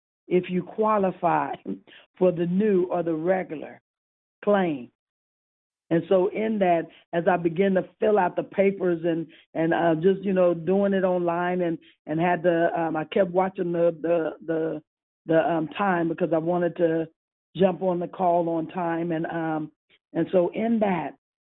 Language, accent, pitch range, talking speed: English, American, 170-195 Hz, 170 wpm